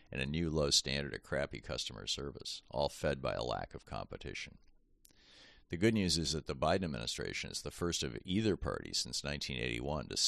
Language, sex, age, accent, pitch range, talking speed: English, male, 50-69, American, 70-80 Hz, 185 wpm